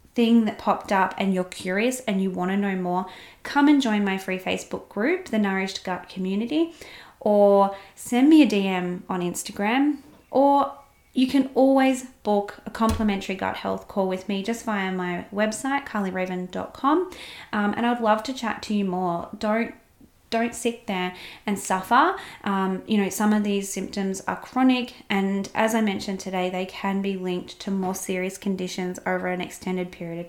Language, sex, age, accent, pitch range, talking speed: English, female, 20-39, Australian, 185-225 Hz, 180 wpm